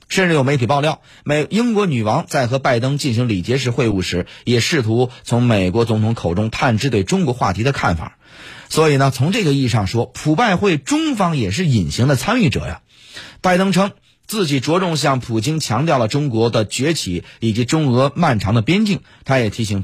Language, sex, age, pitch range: Chinese, male, 30-49, 115-155 Hz